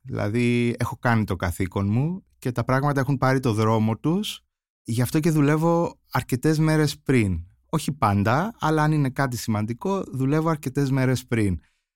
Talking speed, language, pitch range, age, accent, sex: 160 wpm, Greek, 100-150 Hz, 30-49, native, male